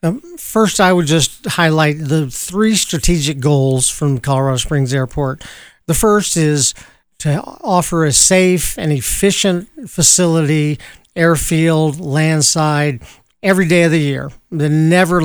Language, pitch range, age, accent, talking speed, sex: English, 145-175 Hz, 50-69, American, 125 wpm, male